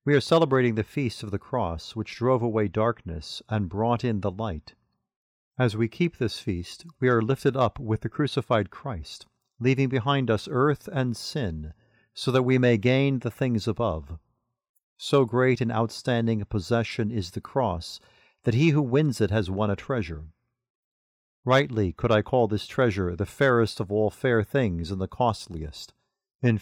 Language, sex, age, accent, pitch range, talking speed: English, male, 40-59, American, 100-130 Hz, 175 wpm